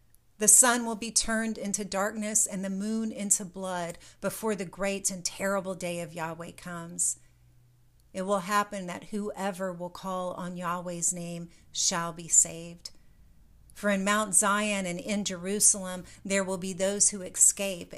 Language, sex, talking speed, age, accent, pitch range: English, female, 155 wpm, 40-59, American, 175-210 Hz